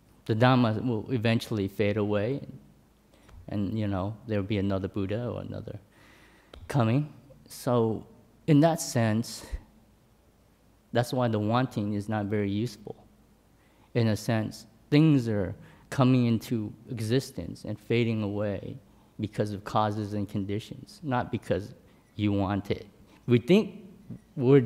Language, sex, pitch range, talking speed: English, male, 100-120 Hz, 130 wpm